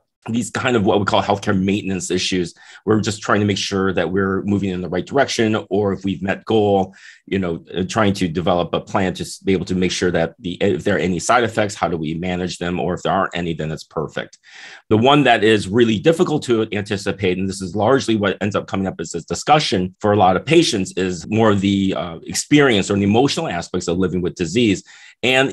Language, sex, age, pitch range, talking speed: English, male, 30-49, 95-110 Hz, 235 wpm